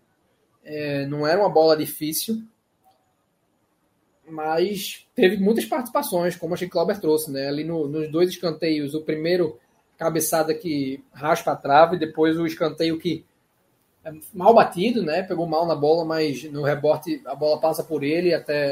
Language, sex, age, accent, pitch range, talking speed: Portuguese, male, 20-39, Brazilian, 155-190 Hz, 165 wpm